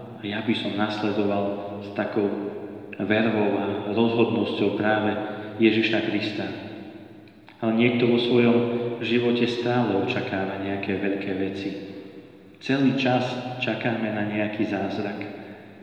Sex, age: male, 30-49